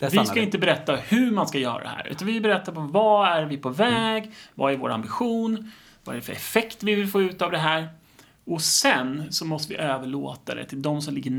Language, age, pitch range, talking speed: Swedish, 30-49, 140-190 Hz, 240 wpm